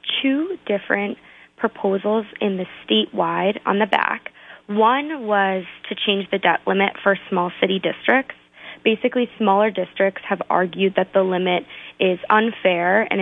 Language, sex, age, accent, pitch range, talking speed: English, female, 20-39, American, 180-210 Hz, 140 wpm